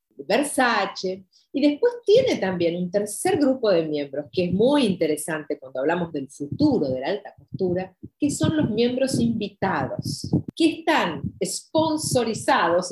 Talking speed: 140 wpm